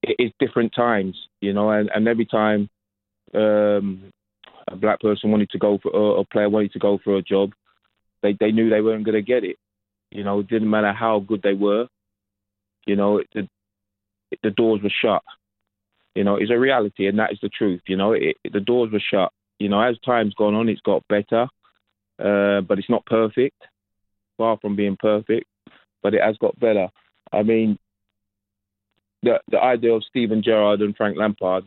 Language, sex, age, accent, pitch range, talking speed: English, male, 20-39, British, 100-110 Hz, 200 wpm